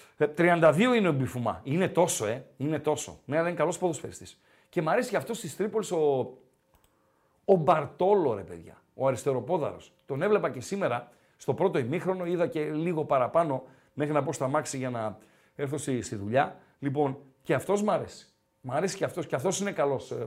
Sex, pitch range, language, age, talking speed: male, 145-210 Hz, Greek, 50-69, 180 wpm